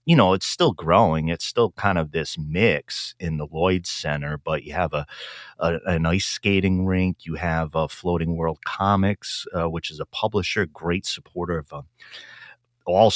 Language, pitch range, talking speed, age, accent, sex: English, 80-100 Hz, 180 wpm, 30-49, American, male